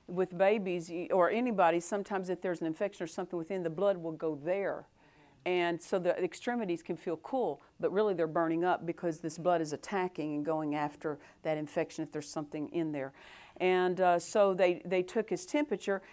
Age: 50-69